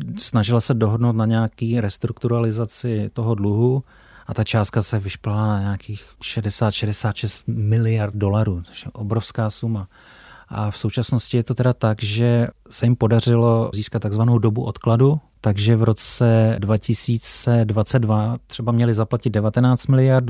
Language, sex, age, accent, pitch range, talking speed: Czech, male, 30-49, native, 105-120 Hz, 135 wpm